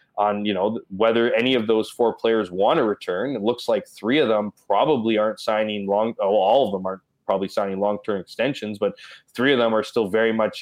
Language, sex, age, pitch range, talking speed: English, male, 20-39, 105-120 Hz, 215 wpm